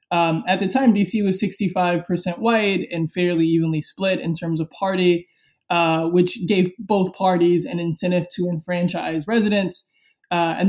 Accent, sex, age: American, male, 20-39